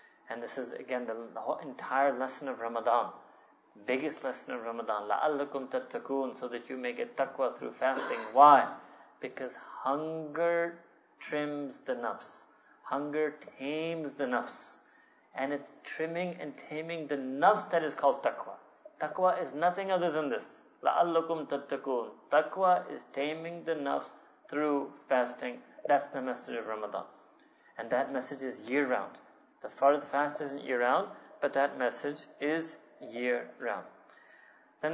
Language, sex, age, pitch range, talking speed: English, male, 30-49, 130-160 Hz, 140 wpm